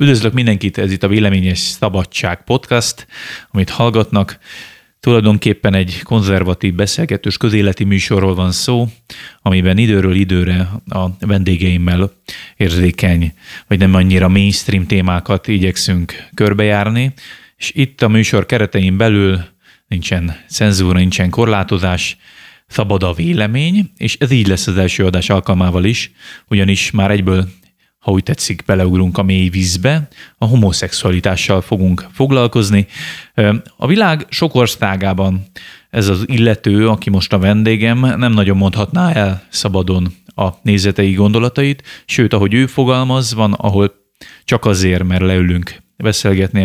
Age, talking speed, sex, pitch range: 30-49, 125 wpm, male, 95-115 Hz